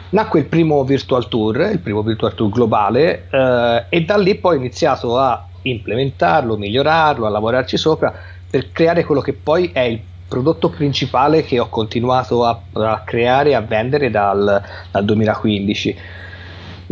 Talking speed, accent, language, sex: 155 wpm, native, Italian, male